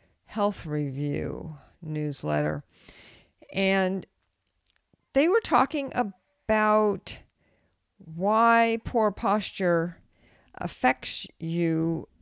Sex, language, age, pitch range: female, English, 50-69, 155-225 Hz